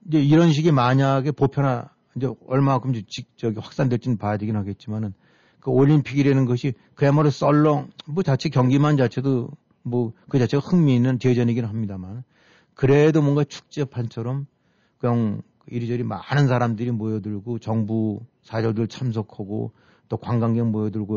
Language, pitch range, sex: Korean, 110-135 Hz, male